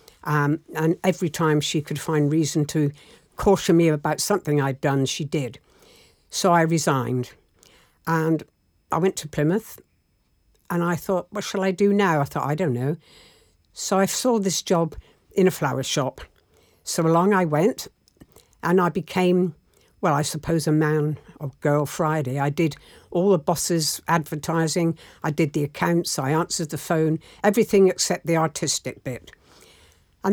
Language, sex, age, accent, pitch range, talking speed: English, female, 60-79, British, 150-185 Hz, 160 wpm